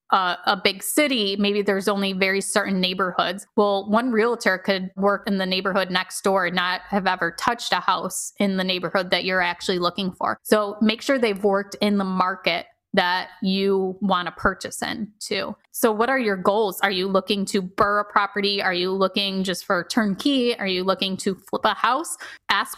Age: 20-39